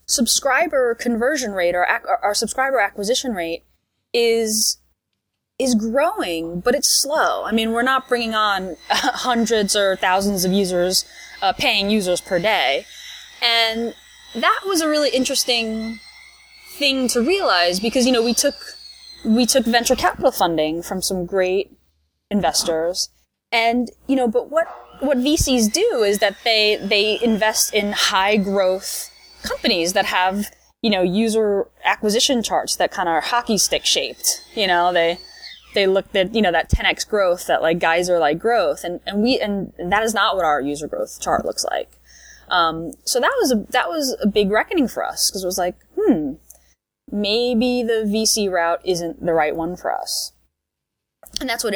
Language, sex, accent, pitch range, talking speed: English, female, American, 180-245 Hz, 170 wpm